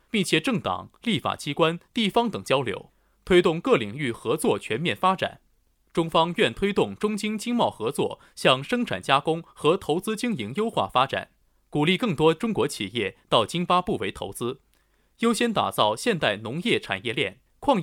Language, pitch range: Chinese, 150-215 Hz